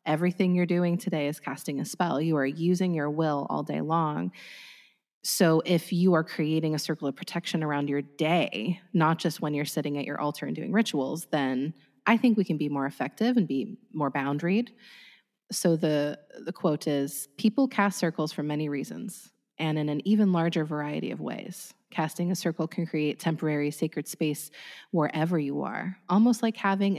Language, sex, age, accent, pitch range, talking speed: English, female, 20-39, American, 150-190 Hz, 185 wpm